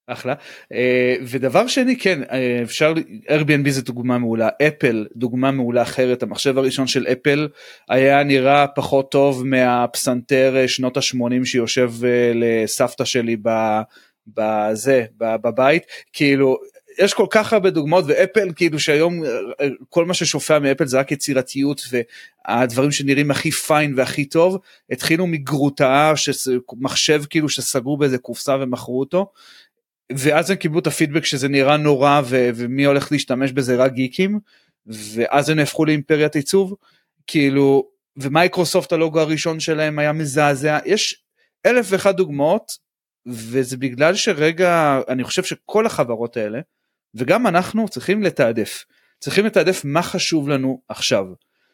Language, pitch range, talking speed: Hebrew, 130-165 Hz, 130 wpm